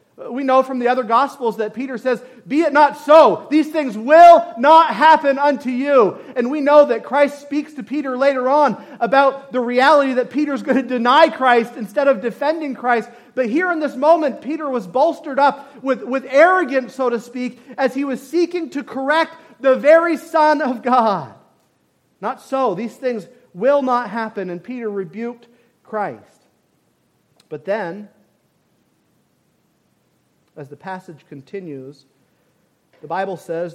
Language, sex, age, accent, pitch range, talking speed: English, male, 40-59, American, 170-270 Hz, 160 wpm